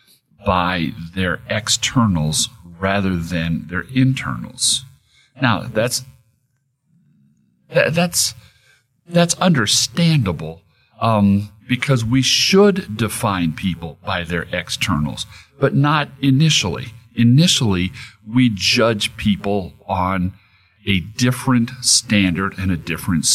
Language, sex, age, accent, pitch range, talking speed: English, male, 50-69, American, 90-130 Hz, 95 wpm